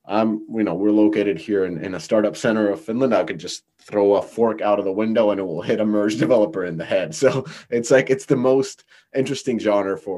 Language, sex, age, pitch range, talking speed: English, male, 30-49, 95-115 Hz, 250 wpm